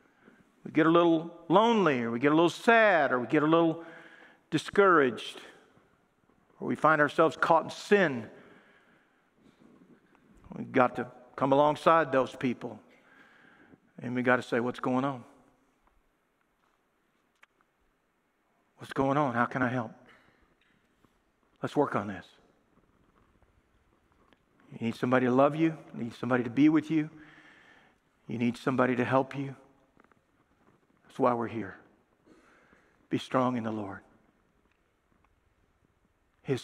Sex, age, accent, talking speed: male, 50-69, American, 130 wpm